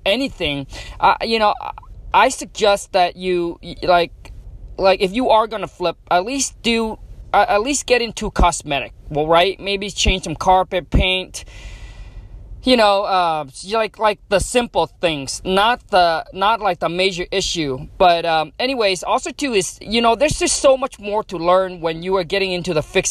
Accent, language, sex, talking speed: American, English, male, 175 wpm